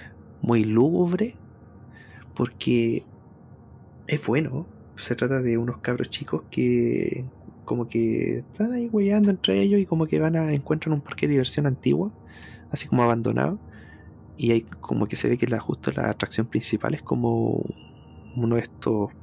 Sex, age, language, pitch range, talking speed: male, 30-49, Spanish, 100-140 Hz, 155 wpm